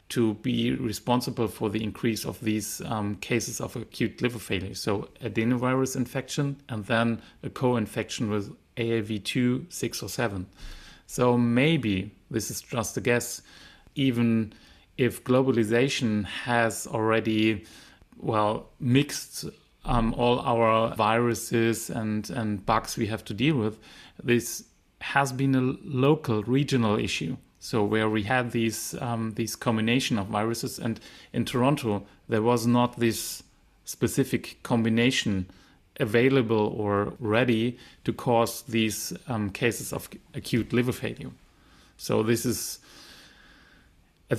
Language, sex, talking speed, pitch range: English, male, 125 wpm, 110-125 Hz